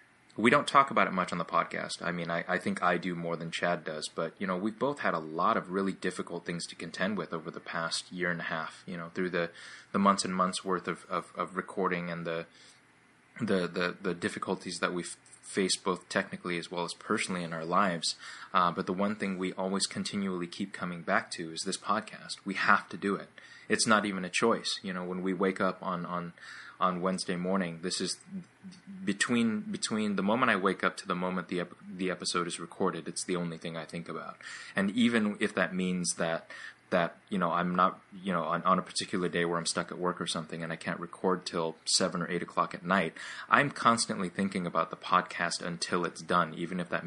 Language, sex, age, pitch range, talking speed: English, male, 20-39, 85-95 Hz, 235 wpm